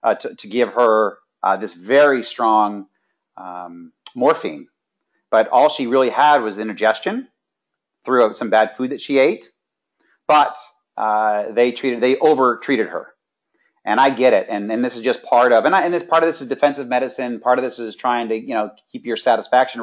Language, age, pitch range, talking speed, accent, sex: English, 40-59, 110-135 Hz, 195 wpm, American, male